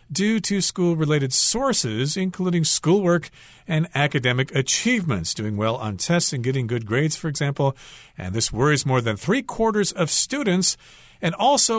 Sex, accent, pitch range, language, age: male, American, 125-175 Hz, Chinese, 50-69